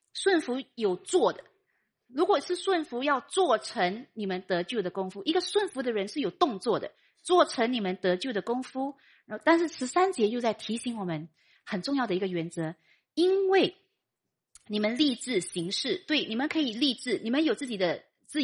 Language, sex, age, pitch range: Chinese, female, 30-49, 195-310 Hz